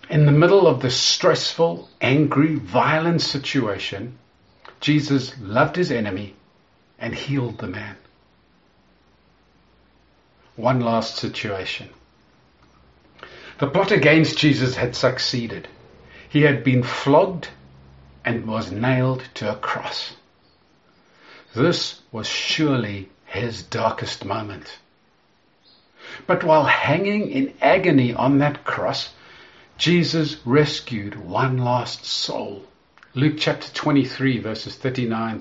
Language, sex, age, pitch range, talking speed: English, male, 50-69, 110-150 Hz, 100 wpm